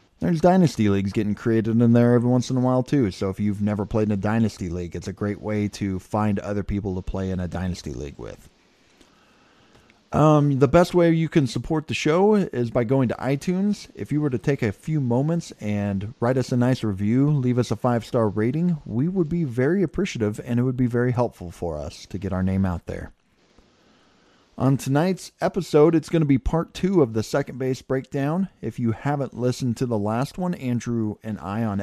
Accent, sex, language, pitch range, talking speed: American, male, English, 110-150 Hz, 215 wpm